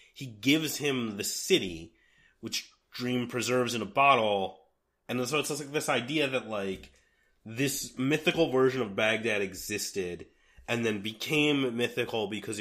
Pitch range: 100-125 Hz